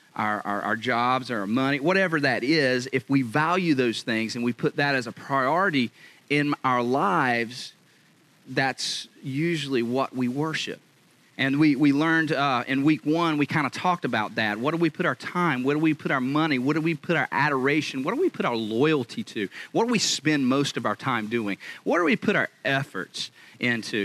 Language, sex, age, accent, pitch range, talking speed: English, male, 30-49, American, 130-165 Hz, 210 wpm